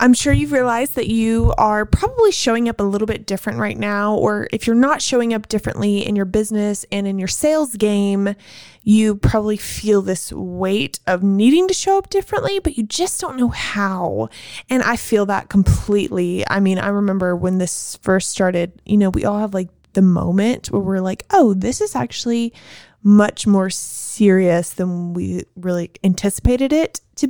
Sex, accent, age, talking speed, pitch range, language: female, American, 20-39, 185 wpm, 185-220 Hz, English